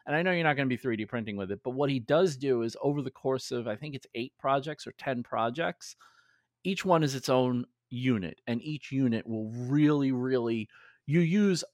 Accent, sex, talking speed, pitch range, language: American, male, 225 wpm, 120-150 Hz, English